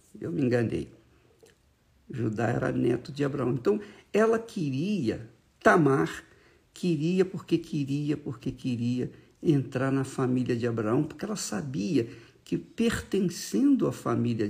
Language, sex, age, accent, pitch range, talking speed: Portuguese, male, 50-69, Brazilian, 130-185 Hz, 120 wpm